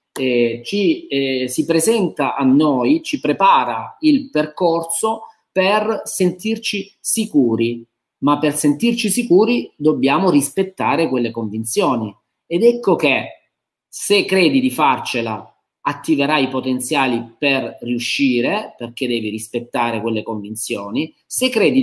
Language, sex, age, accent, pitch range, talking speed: Italian, male, 30-49, native, 130-205 Hz, 115 wpm